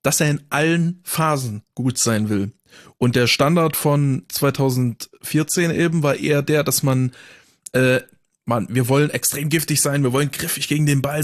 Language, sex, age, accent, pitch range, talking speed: German, male, 20-39, German, 125-160 Hz, 170 wpm